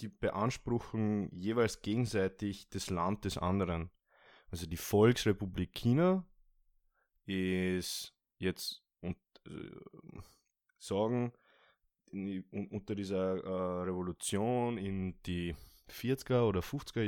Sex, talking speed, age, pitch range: male, 95 wpm, 20-39, 90-105 Hz